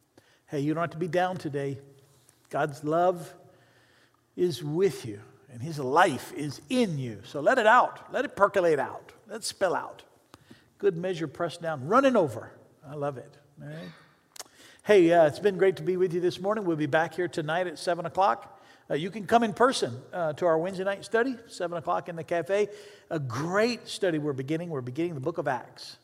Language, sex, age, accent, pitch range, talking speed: English, male, 50-69, American, 145-185 Hz, 200 wpm